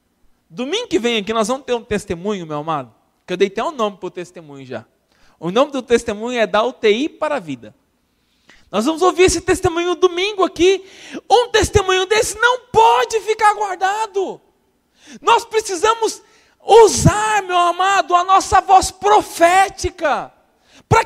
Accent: Brazilian